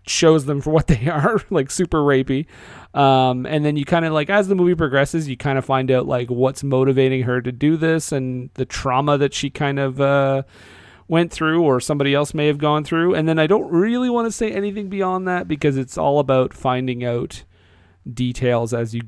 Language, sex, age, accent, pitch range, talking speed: English, male, 40-59, American, 125-155 Hz, 215 wpm